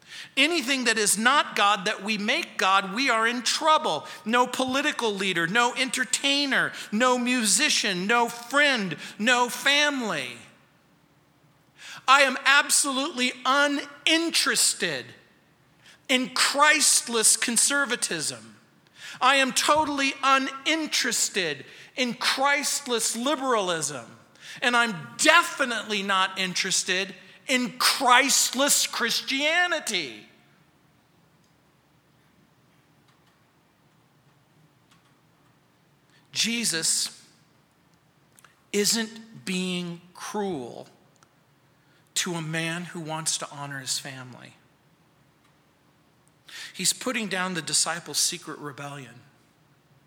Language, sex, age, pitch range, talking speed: English, male, 40-59, 160-255 Hz, 80 wpm